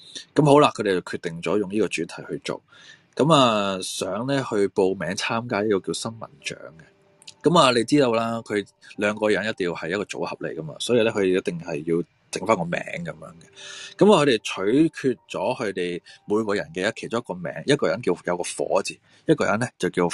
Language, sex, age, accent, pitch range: Chinese, male, 20-39, native, 95-130 Hz